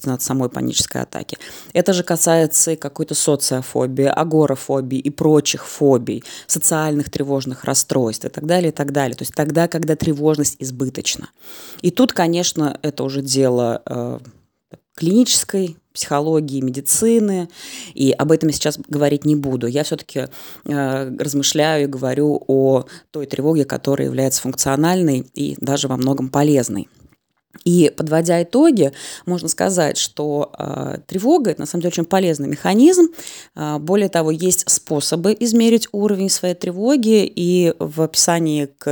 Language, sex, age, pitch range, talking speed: Russian, female, 20-39, 140-185 Hz, 140 wpm